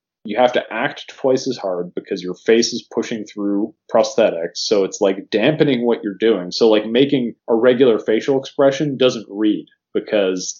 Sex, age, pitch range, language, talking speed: male, 30-49, 105-130 Hz, English, 175 wpm